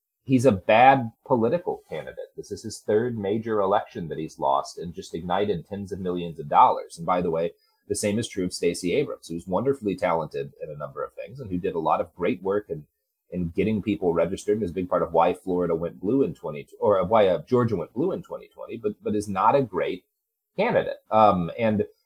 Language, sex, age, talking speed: English, male, 30-49, 225 wpm